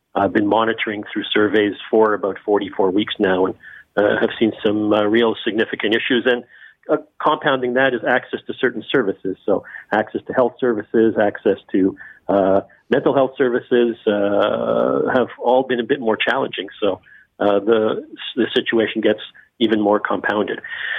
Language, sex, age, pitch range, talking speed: English, male, 50-69, 105-125 Hz, 160 wpm